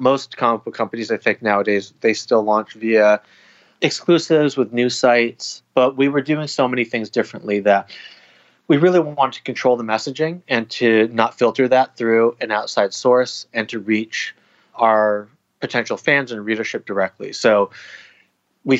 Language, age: English, 30-49